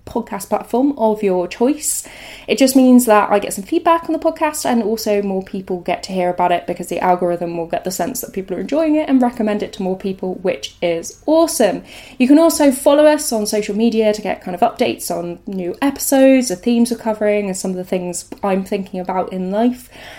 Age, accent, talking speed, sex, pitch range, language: 10-29, British, 225 wpm, female, 185-230 Hz, English